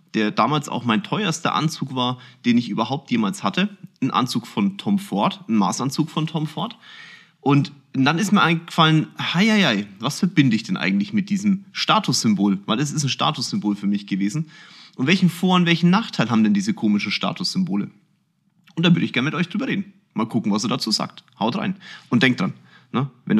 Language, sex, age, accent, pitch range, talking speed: German, male, 30-49, German, 140-195 Hz, 205 wpm